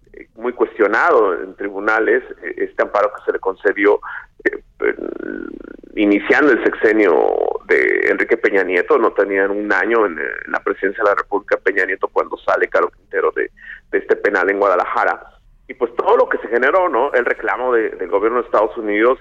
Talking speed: 175 wpm